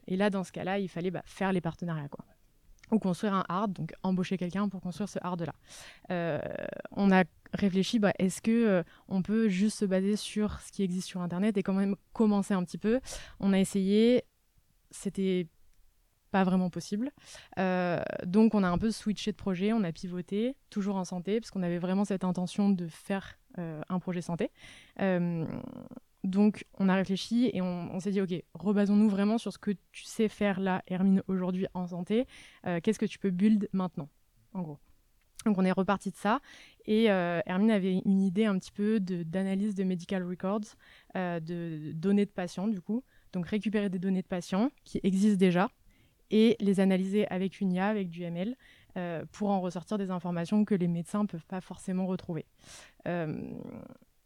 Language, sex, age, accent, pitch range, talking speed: French, female, 20-39, French, 180-210 Hz, 195 wpm